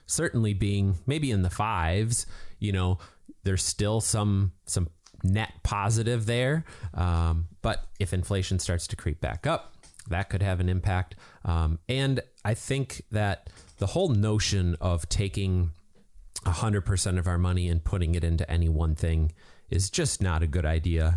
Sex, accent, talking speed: male, American, 160 wpm